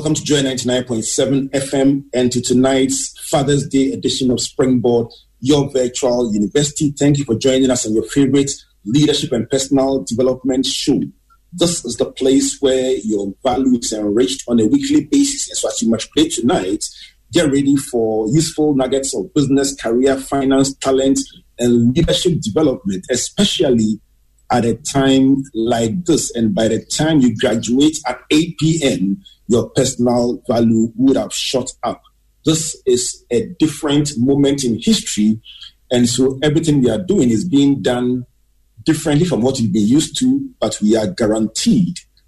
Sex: male